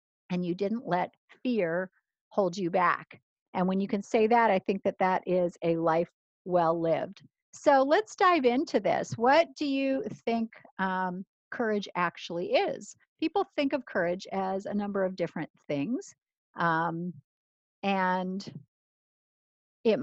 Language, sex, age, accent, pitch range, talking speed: English, female, 50-69, American, 175-230 Hz, 145 wpm